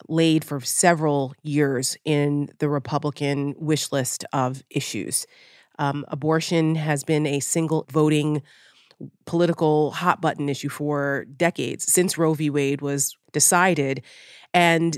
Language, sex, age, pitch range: English, female, 30-49, 150-170 Hz